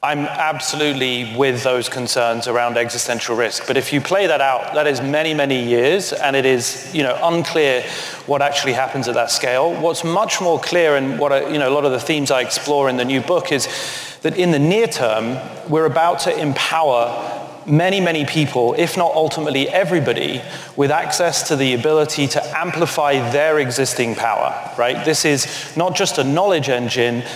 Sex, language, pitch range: male, English, 130-155 Hz